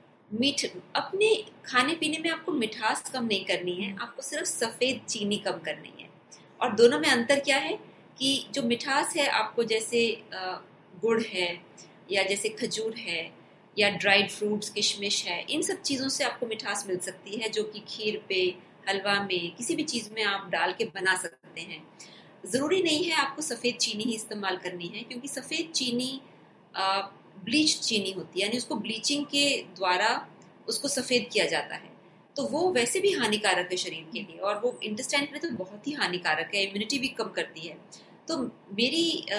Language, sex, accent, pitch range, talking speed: Hindi, female, native, 195-260 Hz, 180 wpm